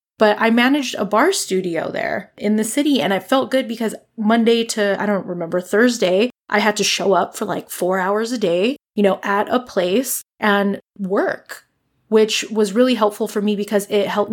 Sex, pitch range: female, 185-215 Hz